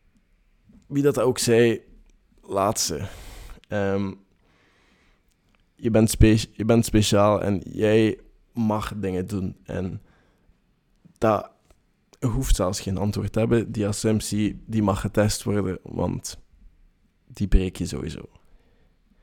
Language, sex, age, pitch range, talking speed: Dutch, male, 20-39, 95-105 Hz, 110 wpm